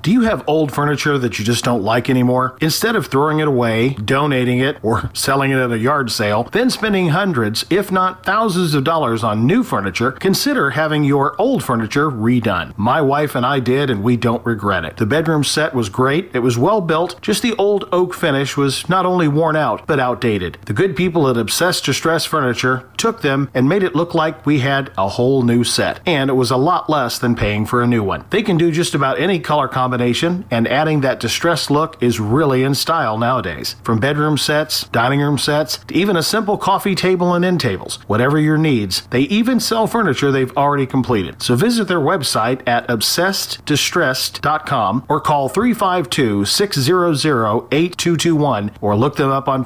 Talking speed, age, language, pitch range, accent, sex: 195 wpm, 40-59, English, 120-165 Hz, American, male